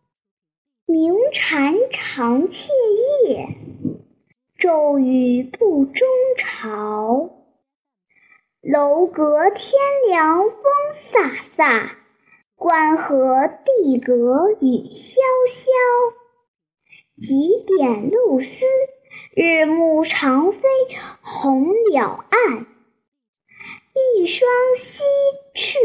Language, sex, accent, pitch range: Chinese, male, native, 260-430 Hz